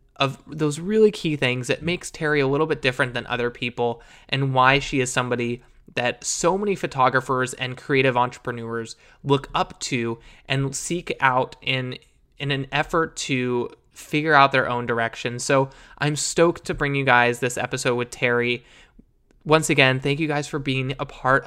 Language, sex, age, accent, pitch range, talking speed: English, male, 20-39, American, 125-150 Hz, 175 wpm